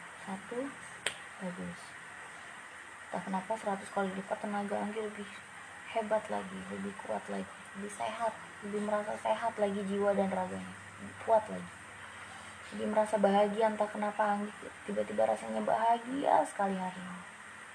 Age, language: 20-39, Indonesian